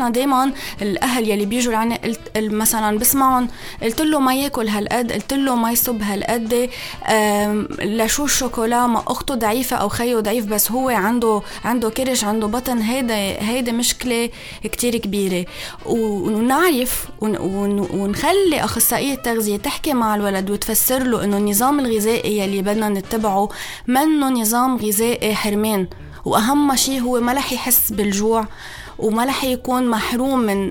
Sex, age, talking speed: female, 20-39, 130 wpm